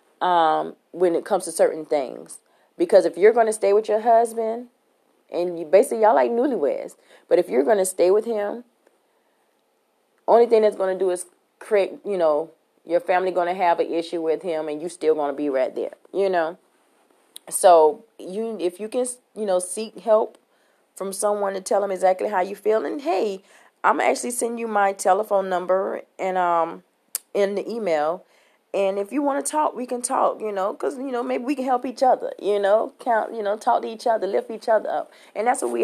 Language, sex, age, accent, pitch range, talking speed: English, female, 30-49, American, 170-220 Hz, 215 wpm